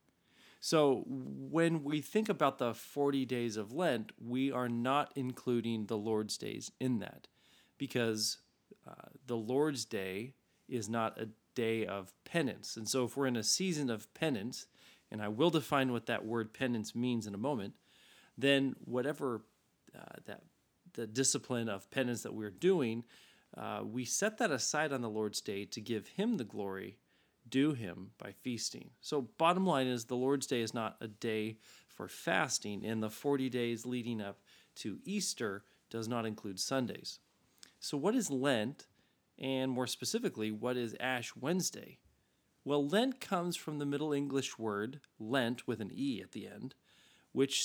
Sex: male